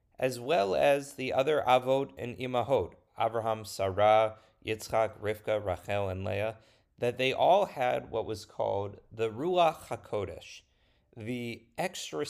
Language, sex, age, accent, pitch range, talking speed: English, male, 30-49, American, 100-130 Hz, 130 wpm